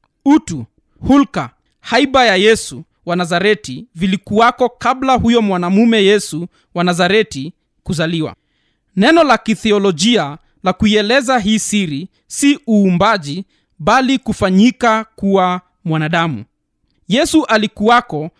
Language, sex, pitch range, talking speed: Swahili, male, 180-235 Hz, 95 wpm